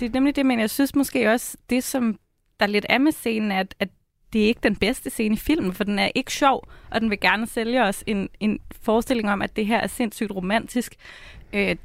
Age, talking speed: 20-39, 245 wpm